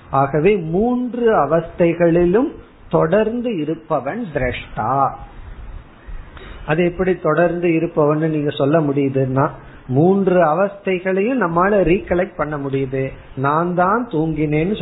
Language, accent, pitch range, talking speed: Tamil, native, 135-185 Hz, 75 wpm